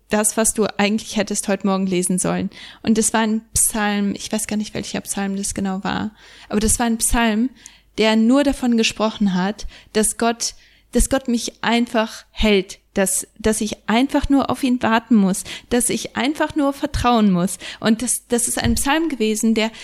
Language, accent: German, German